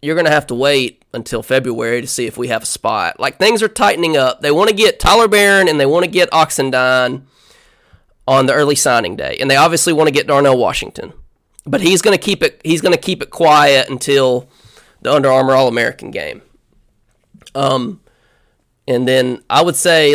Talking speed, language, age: 195 wpm, English, 20-39